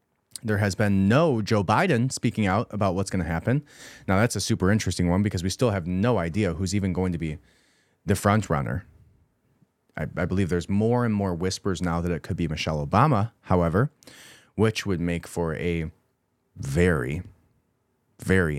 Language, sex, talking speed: English, male, 180 wpm